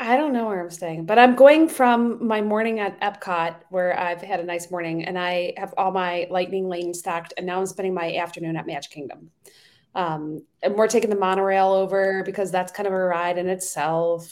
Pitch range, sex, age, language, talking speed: 175-215 Hz, female, 30-49, English, 220 wpm